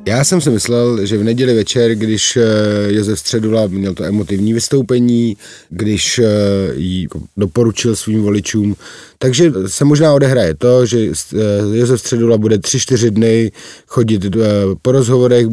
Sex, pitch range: male, 105-130 Hz